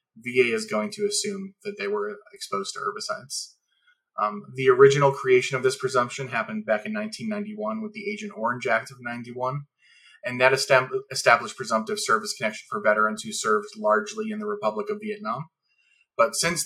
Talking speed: 175 wpm